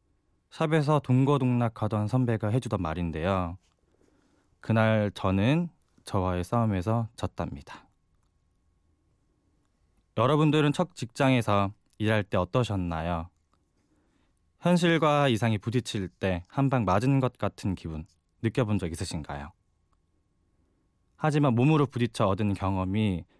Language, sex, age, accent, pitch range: Korean, male, 20-39, native, 90-125 Hz